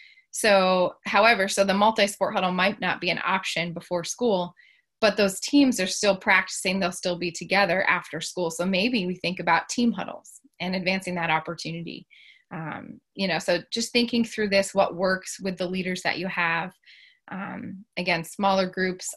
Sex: female